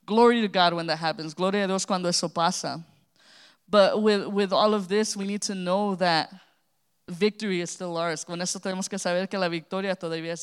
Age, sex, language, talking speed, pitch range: 20-39, female, English, 215 wpm, 165-200 Hz